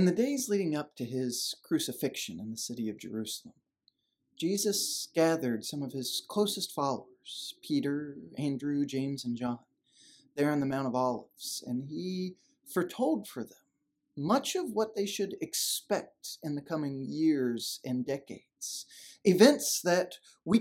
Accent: American